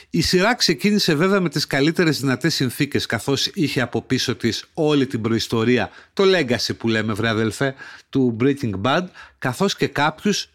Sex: male